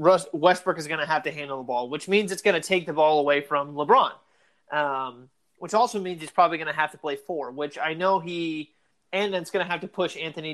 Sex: male